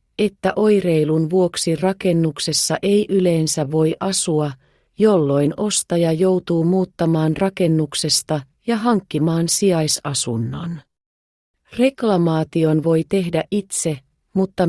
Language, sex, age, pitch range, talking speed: Finnish, female, 30-49, 155-190 Hz, 85 wpm